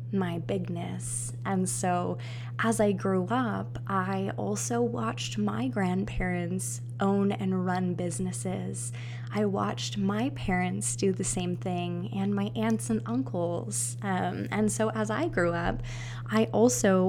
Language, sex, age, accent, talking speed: English, female, 20-39, American, 135 wpm